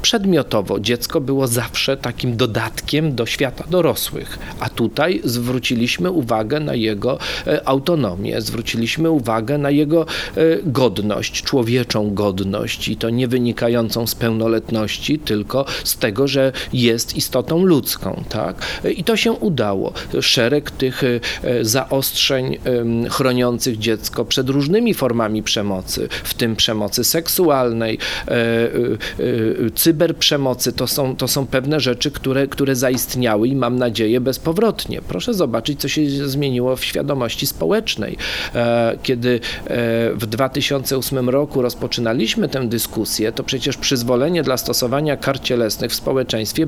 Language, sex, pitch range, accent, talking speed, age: Polish, male, 115-150 Hz, native, 115 wpm, 40-59